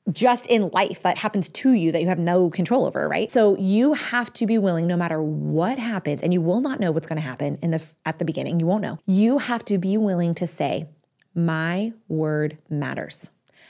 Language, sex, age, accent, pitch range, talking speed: English, female, 30-49, American, 170-235 Hz, 215 wpm